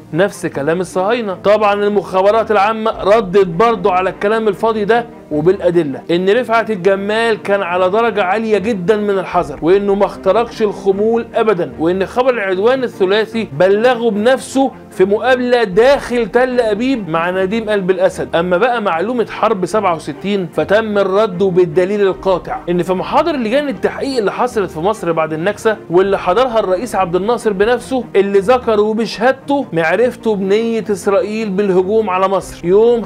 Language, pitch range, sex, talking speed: Arabic, 185-230 Hz, male, 145 wpm